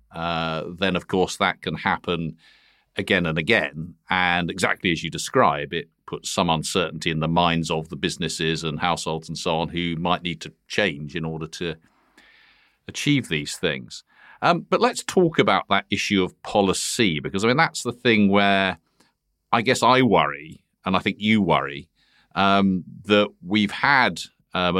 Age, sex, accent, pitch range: 40-59, male, British, 80-95 Hz